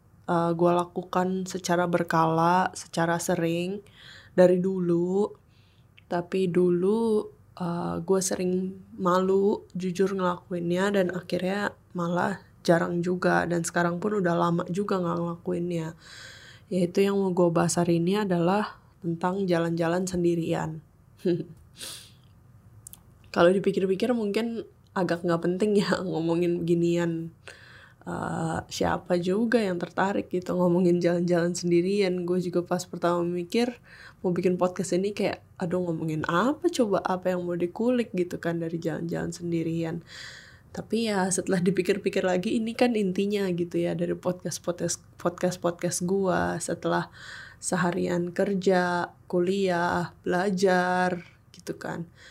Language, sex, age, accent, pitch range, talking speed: Indonesian, female, 10-29, native, 170-190 Hz, 120 wpm